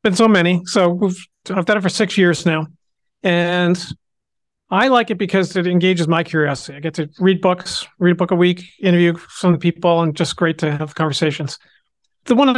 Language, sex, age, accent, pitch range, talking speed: English, male, 40-59, American, 160-190 Hz, 215 wpm